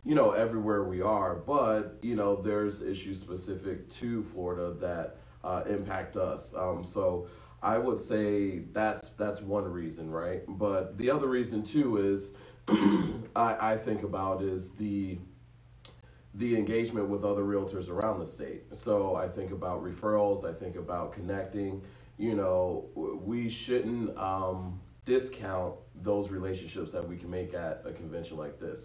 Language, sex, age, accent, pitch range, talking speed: English, male, 30-49, American, 90-105 Hz, 150 wpm